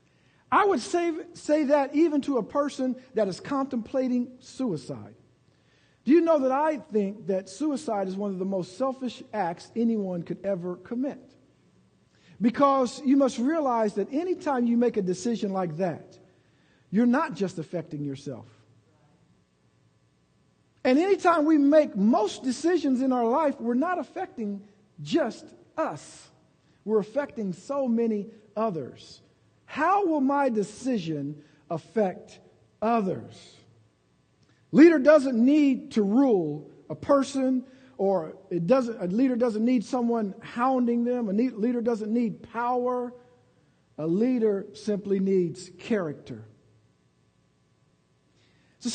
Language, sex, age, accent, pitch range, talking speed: English, male, 50-69, American, 175-260 Hz, 125 wpm